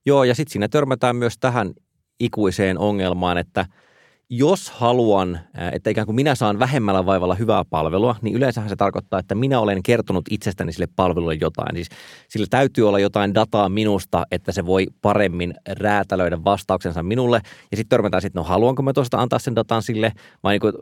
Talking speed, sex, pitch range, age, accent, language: 175 wpm, male, 95-115 Hz, 20-39, native, Finnish